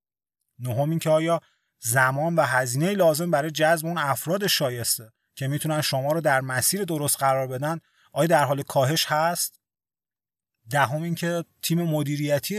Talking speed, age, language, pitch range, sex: 155 wpm, 30-49, Persian, 130-160 Hz, male